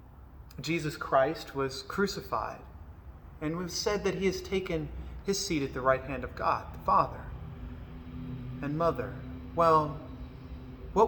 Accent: American